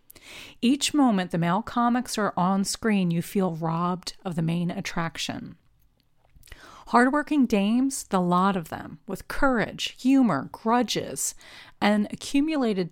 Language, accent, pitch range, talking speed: English, American, 170-225 Hz, 130 wpm